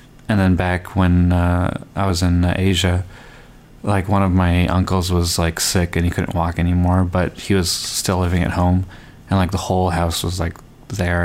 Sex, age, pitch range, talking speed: male, 20-39, 90-100 Hz, 205 wpm